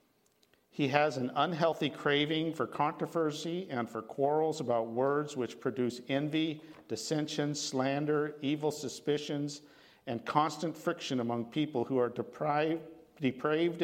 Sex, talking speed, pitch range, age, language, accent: male, 115 wpm, 120-150 Hz, 50-69, English, American